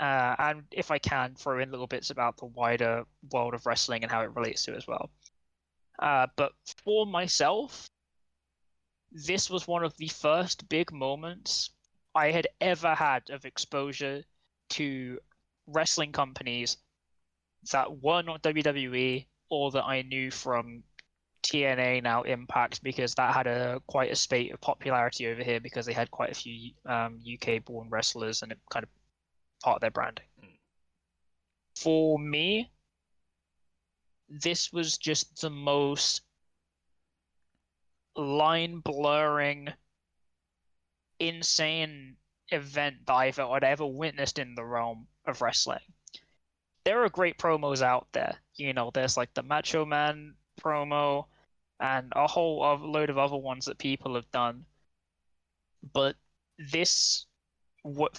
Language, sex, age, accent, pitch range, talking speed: English, male, 10-29, British, 100-150 Hz, 140 wpm